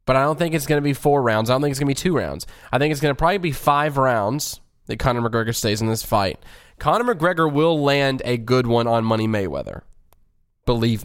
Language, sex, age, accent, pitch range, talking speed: English, male, 20-39, American, 110-145 Hz, 250 wpm